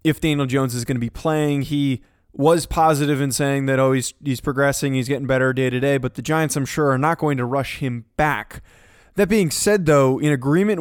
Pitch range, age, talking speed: 130-155 Hz, 20-39, 235 wpm